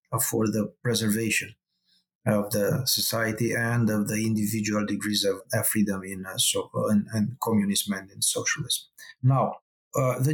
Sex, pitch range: male, 105-145 Hz